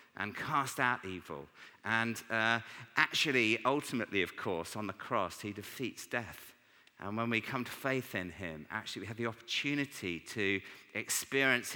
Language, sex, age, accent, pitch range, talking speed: English, male, 50-69, British, 95-125 Hz, 160 wpm